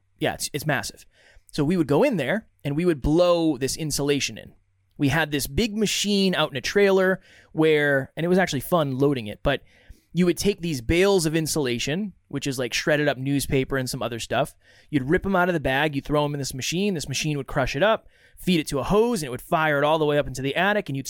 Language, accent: English, American